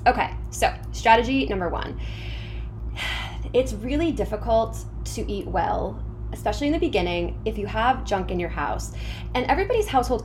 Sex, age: female, 20-39